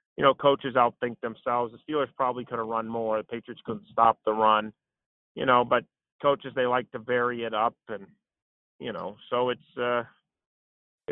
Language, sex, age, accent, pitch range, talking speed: English, male, 40-59, American, 110-140 Hz, 185 wpm